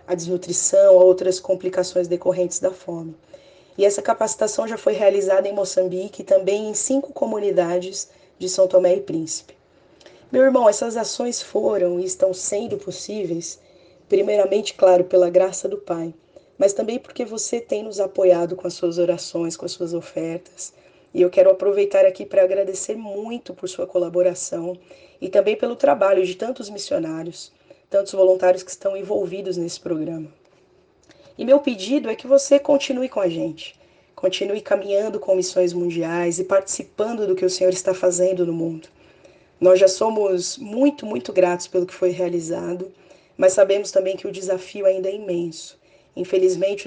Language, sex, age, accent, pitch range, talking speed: Portuguese, female, 20-39, Brazilian, 180-200 Hz, 160 wpm